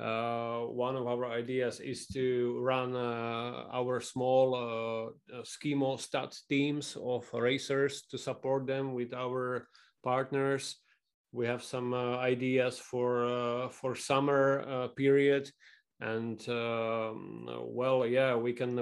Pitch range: 115-130 Hz